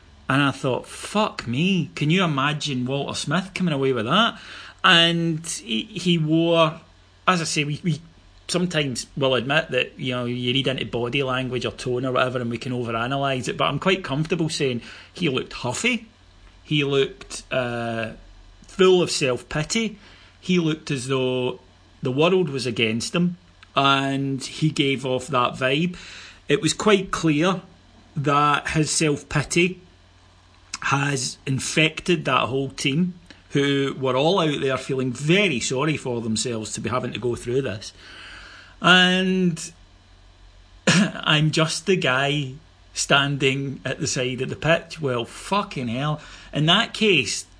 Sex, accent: male, British